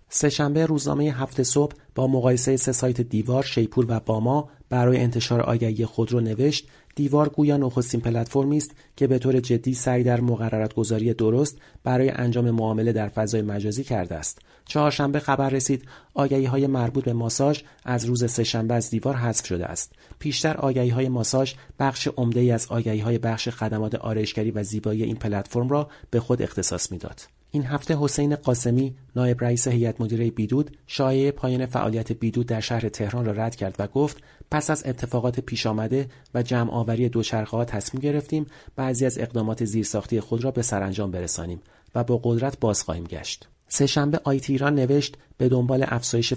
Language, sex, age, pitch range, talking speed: Persian, male, 40-59, 115-135 Hz, 165 wpm